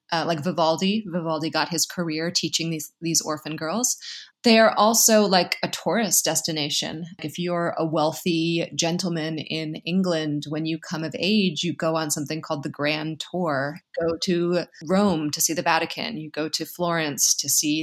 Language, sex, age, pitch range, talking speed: English, female, 20-39, 155-180 Hz, 175 wpm